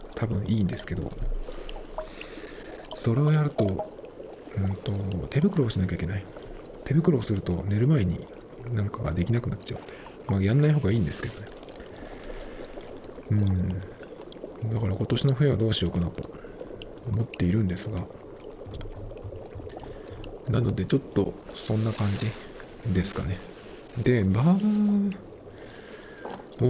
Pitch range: 95-145 Hz